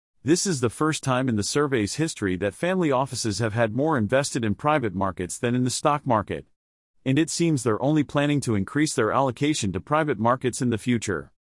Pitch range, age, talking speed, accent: 110-150 Hz, 40-59, 210 wpm, American